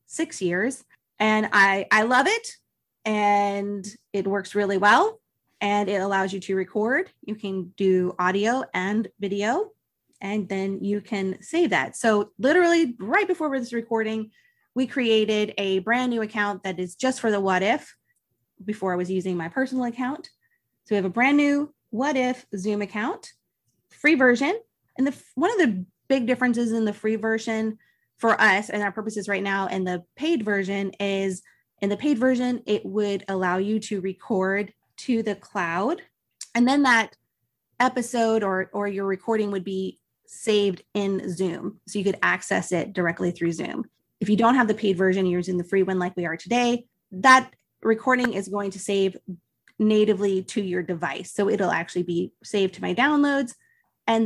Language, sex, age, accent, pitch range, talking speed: English, female, 30-49, American, 195-245 Hz, 175 wpm